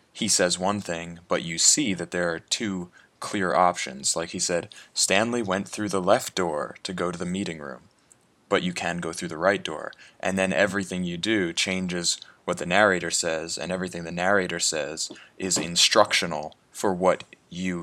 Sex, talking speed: male, 190 wpm